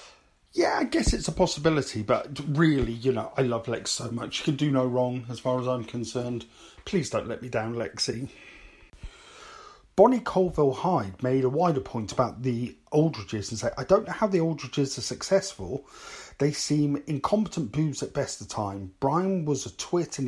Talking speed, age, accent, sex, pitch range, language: 185 wpm, 40-59, British, male, 125-185 Hz, English